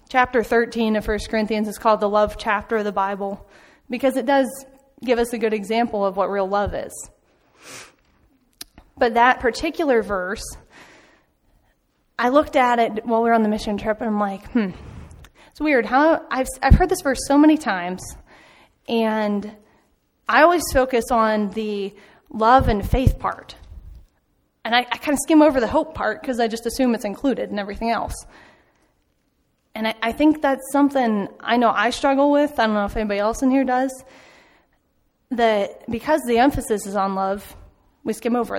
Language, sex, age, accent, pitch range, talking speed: English, female, 20-39, American, 215-265 Hz, 180 wpm